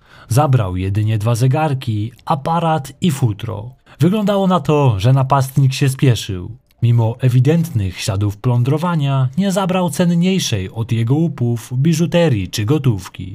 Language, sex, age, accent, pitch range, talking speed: Polish, male, 20-39, native, 110-150 Hz, 120 wpm